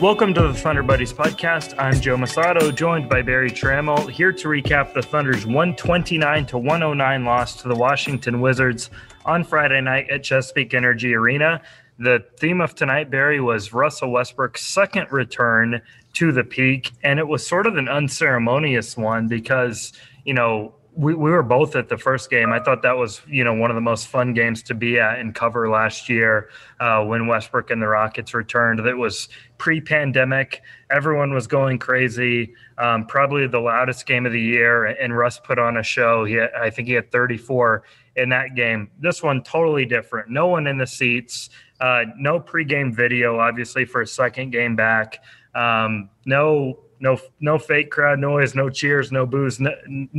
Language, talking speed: English, 180 wpm